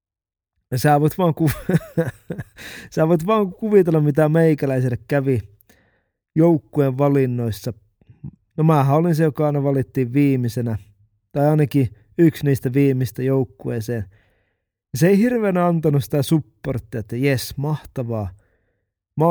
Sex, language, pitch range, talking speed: male, Finnish, 110-150 Hz, 120 wpm